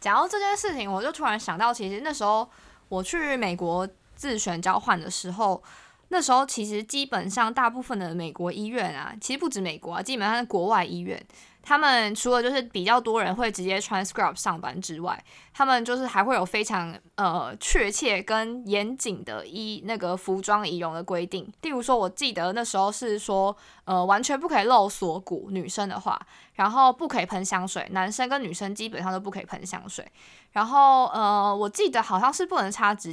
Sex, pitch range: female, 185-250 Hz